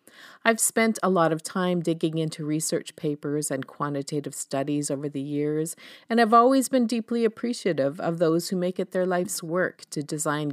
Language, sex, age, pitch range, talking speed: English, female, 40-59, 145-190 Hz, 180 wpm